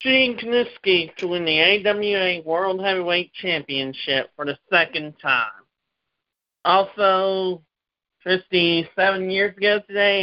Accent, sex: American, male